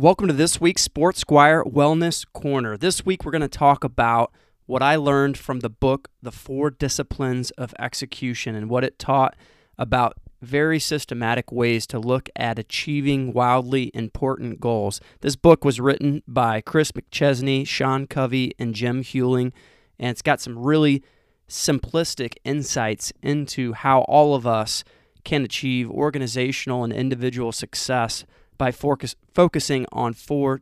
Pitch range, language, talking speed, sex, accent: 120-145 Hz, English, 145 wpm, male, American